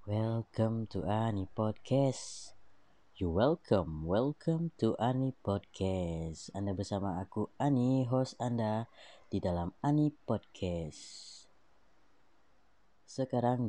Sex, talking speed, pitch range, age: female, 90 wpm, 95-115 Hz, 20-39